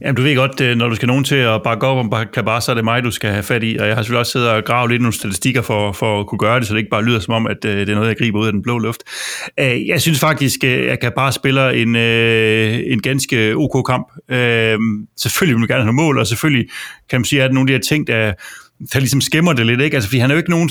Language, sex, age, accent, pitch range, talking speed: Danish, male, 30-49, native, 115-140 Hz, 295 wpm